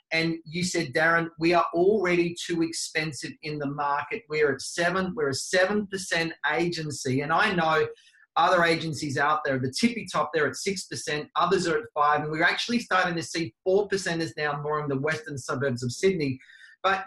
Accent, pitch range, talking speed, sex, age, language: Australian, 150-195 Hz, 185 wpm, male, 30-49, English